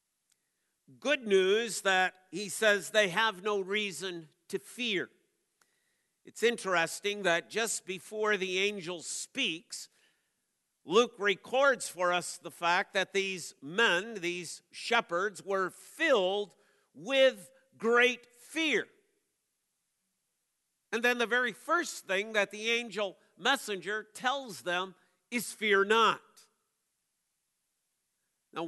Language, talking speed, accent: English, 105 wpm, American